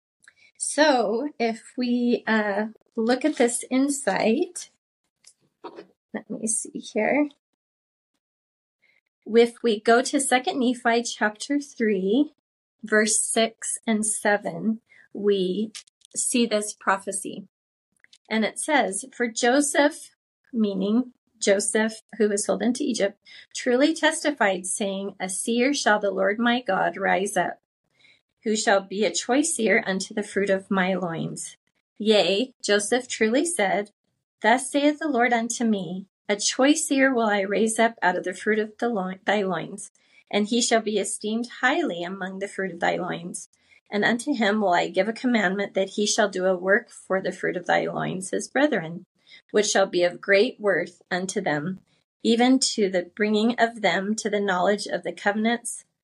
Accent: American